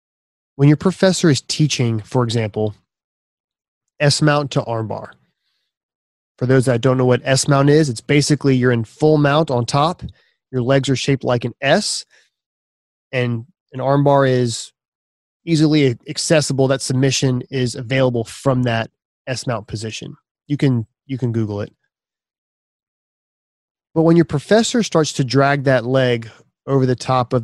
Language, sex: English, male